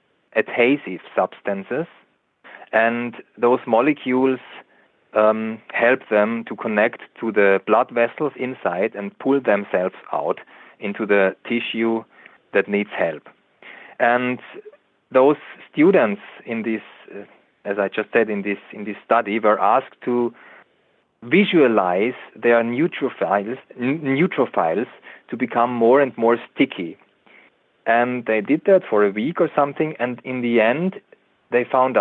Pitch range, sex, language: 105-125 Hz, male, English